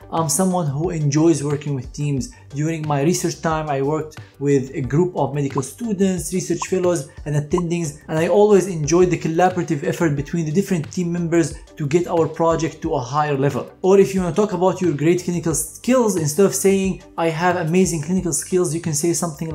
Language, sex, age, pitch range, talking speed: English, male, 20-39, 150-185 Hz, 200 wpm